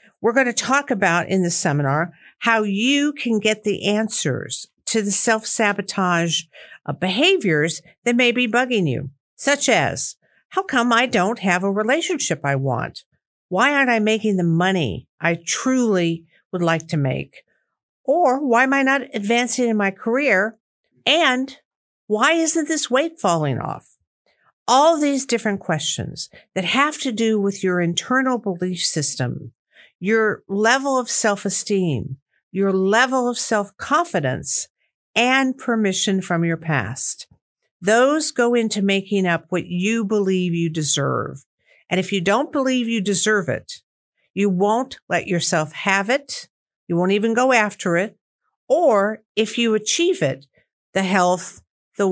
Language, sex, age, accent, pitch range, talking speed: English, female, 50-69, American, 170-240 Hz, 145 wpm